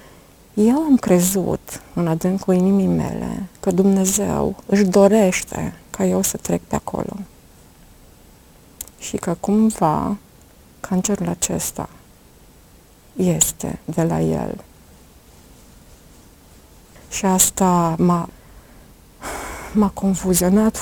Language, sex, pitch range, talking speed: Romanian, female, 175-210 Hz, 90 wpm